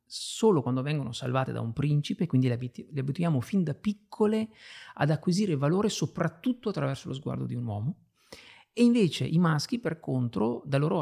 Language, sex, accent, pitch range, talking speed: Italian, male, native, 125-155 Hz, 175 wpm